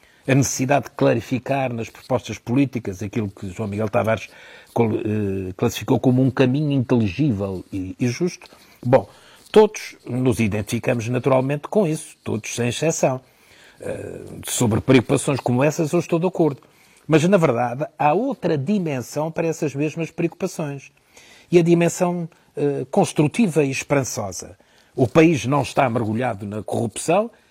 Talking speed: 135 wpm